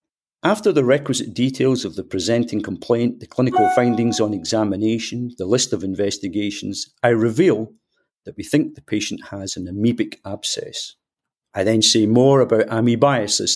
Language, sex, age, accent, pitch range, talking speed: English, male, 50-69, British, 100-125 Hz, 150 wpm